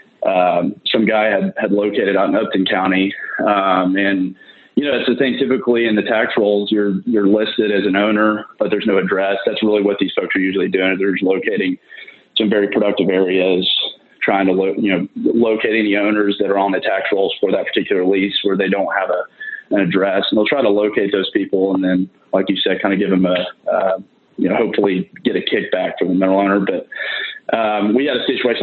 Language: English